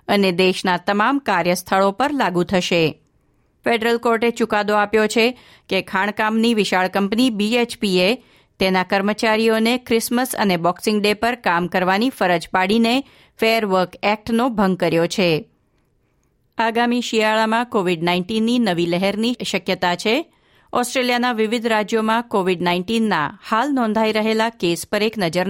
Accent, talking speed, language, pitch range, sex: native, 110 wpm, Gujarati, 185-230 Hz, female